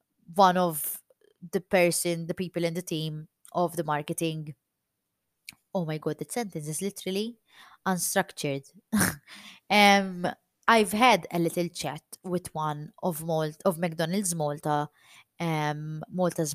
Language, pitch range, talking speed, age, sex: English, 165-230 Hz, 125 wpm, 20-39, female